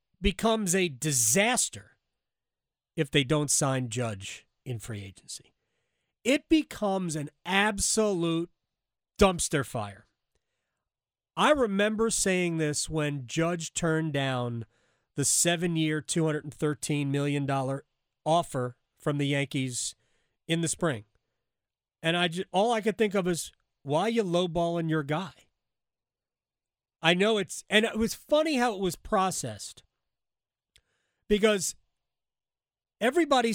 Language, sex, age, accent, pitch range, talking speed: English, male, 40-59, American, 140-225 Hz, 120 wpm